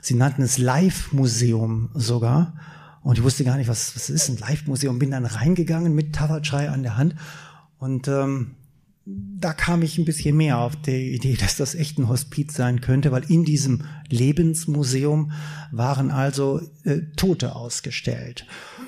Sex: male